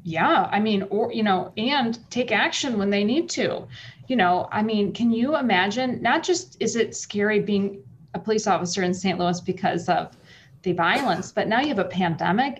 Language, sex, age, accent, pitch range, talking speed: English, female, 30-49, American, 175-215 Hz, 200 wpm